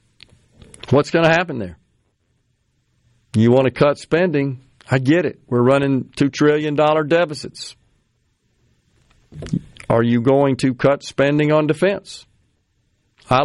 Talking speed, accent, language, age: 120 wpm, American, English, 50-69